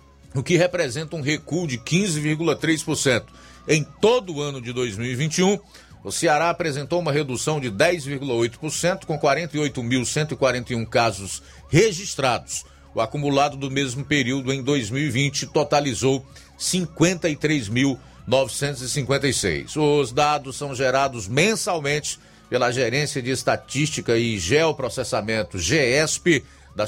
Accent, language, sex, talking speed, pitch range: Brazilian, Portuguese, male, 105 wpm, 110-150 Hz